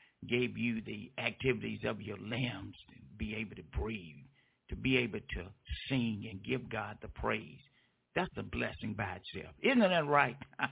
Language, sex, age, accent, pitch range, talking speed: English, male, 60-79, American, 120-160 Hz, 170 wpm